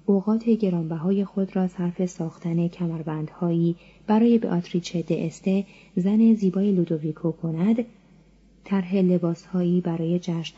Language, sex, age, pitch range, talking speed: Persian, female, 30-49, 175-225 Hz, 110 wpm